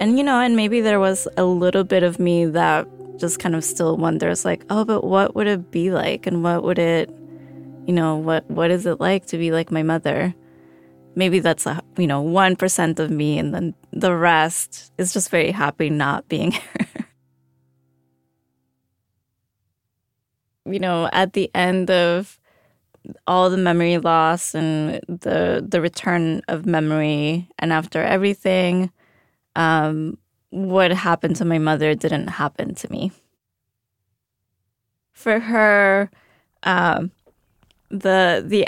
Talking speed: 145 wpm